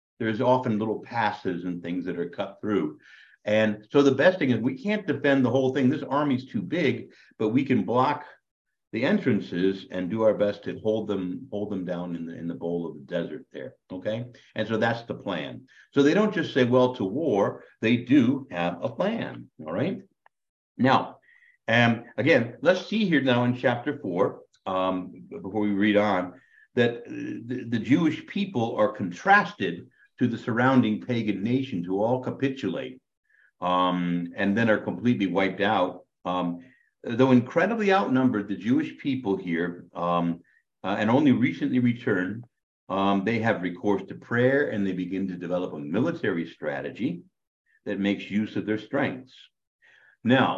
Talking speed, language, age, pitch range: 170 wpm, English, 60-79, 90-130 Hz